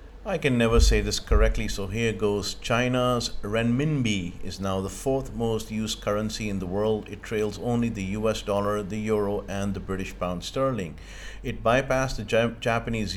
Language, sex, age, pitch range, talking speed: English, male, 50-69, 95-115 Hz, 175 wpm